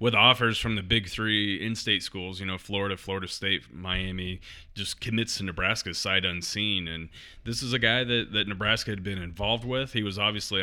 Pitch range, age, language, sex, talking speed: 95-105 Hz, 30-49, English, male, 200 wpm